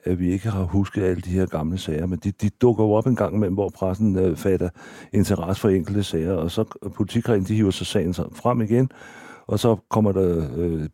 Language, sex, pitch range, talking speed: Danish, male, 90-105 Hz, 220 wpm